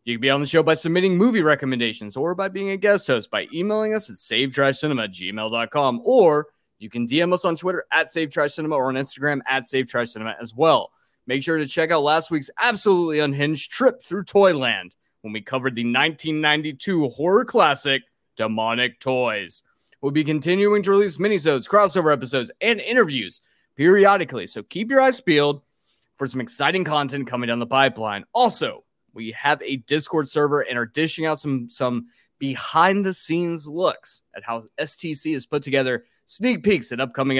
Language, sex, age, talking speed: English, male, 20-39, 170 wpm